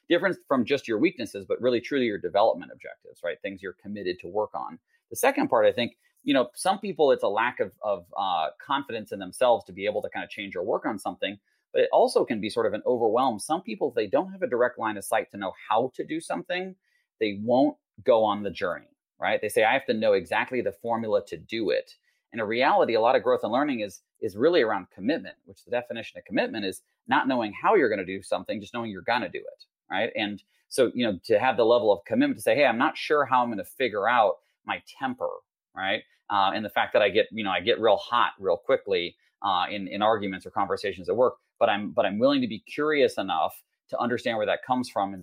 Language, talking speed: English, 255 wpm